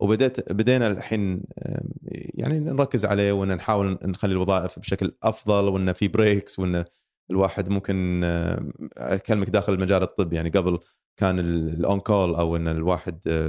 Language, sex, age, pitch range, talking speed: Arabic, male, 20-39, 90-110 Hz, 125 wpm